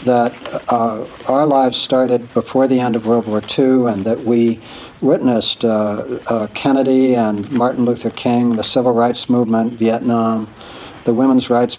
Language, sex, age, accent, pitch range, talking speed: English, male, 60-79, American, 115-130 Hz, 160 wpm